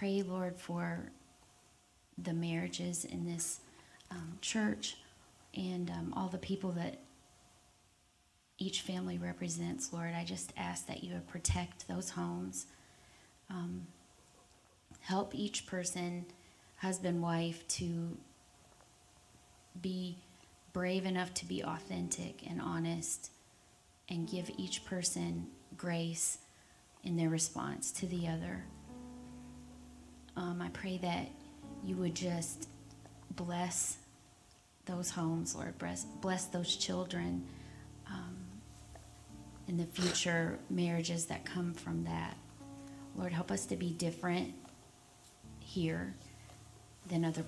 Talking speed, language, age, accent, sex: 110 wpm, English, 30-49, American, female